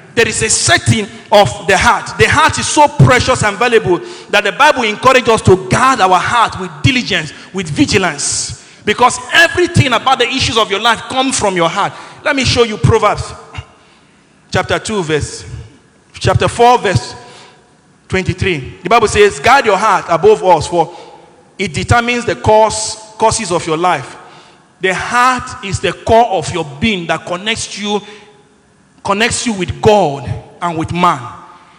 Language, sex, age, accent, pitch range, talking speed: Swedish, male, 50-69, Nigerian, 175-245 Hz, 160 wpm